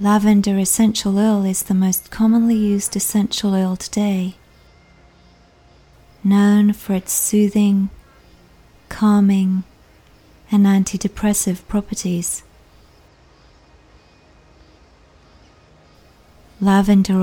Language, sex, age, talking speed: English, female, 30-49, 70 wpm